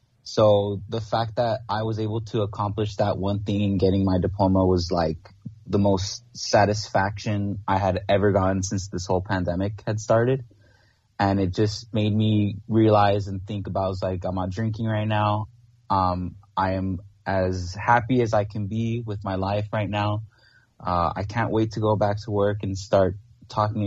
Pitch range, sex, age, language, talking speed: 95-110 Hz, male, 20-39, English, 185 wpm